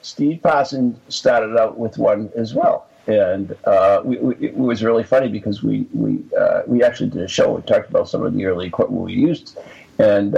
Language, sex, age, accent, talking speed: English, male, 50-69, American, 215 wpm